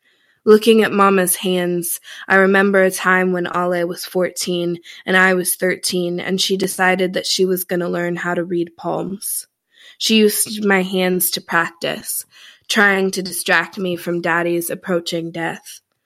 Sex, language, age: female, English, 20-39